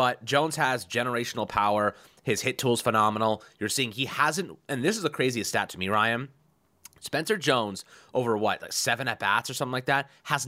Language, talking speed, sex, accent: English, 205 wpm, male, American